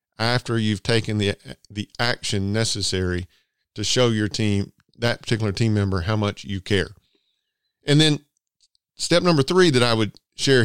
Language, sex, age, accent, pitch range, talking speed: English, male, 50-69, American, 110-140 Hz, 160 wpm